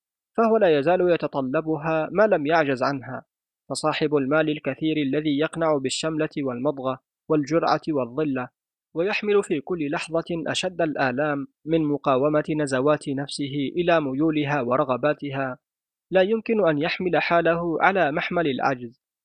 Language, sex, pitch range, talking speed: Arabic, male, 145-165 Hz, 120 wpm